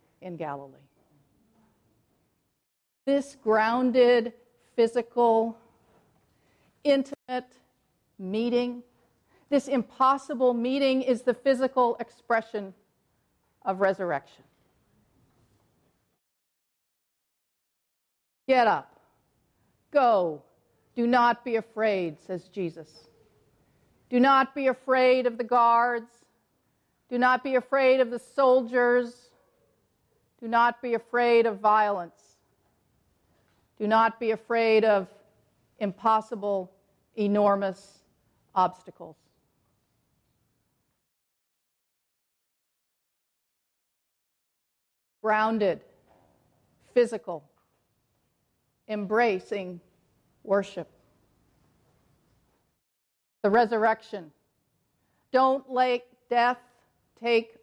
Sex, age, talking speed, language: female, 50-69, 65 wpm, English